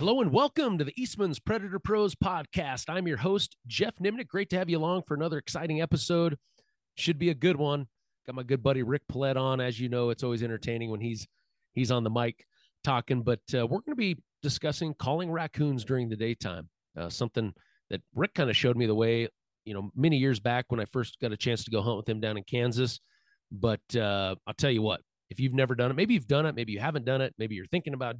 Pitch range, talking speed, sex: 115-145 Hz, 240 wpm, male